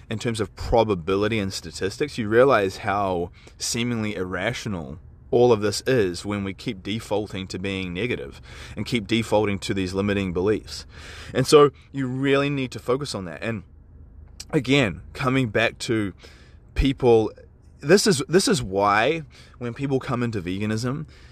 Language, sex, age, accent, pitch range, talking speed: English, male, 20-39, Australian, 90-120 Hz, 150 wpm